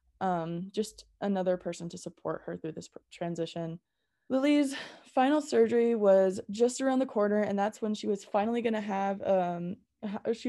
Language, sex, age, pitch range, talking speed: English, female, 20-39, 185-215 Hz, 155 wpm